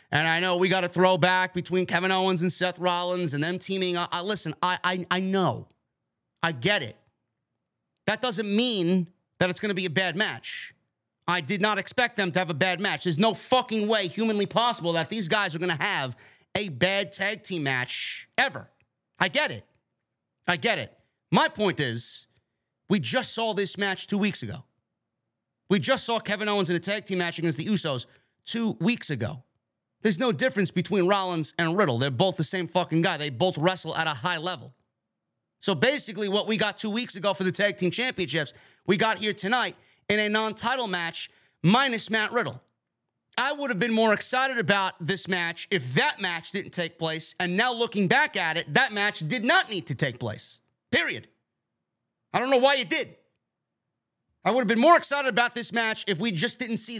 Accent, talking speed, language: American, 205 wpm, English